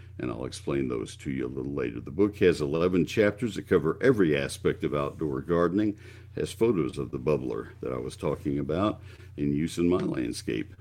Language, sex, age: English, male, 60-79